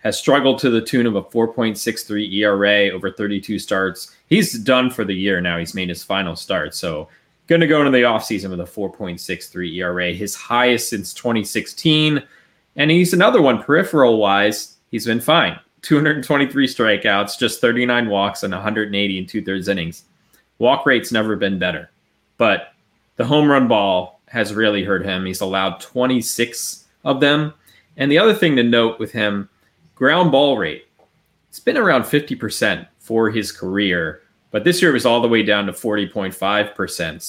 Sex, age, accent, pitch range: male, 20-39, American, 100-125 Hz